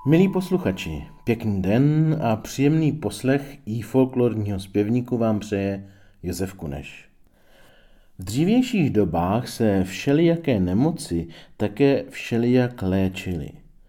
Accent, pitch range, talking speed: native, 95-125 Hz, 100 wpm